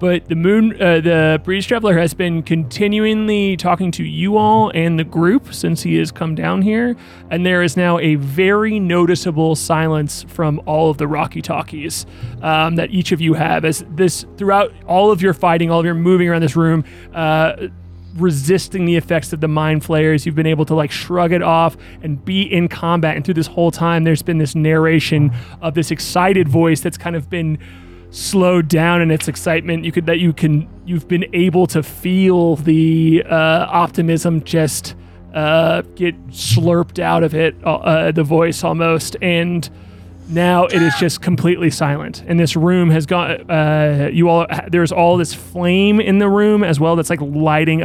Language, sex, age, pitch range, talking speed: English, male, 20-39, 155-175 Hz, 190 wpm